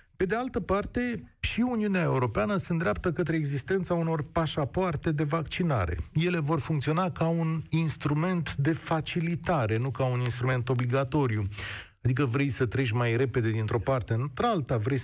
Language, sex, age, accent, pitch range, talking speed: Romanian, male, 40-59, native, 120-165 Hz, 155 wpm